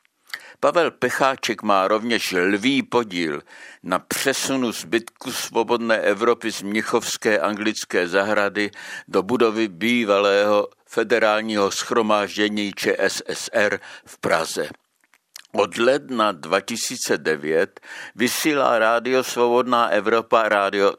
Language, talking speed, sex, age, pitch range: Czech, 90 wpm, male, 60-79, 95-120 Hz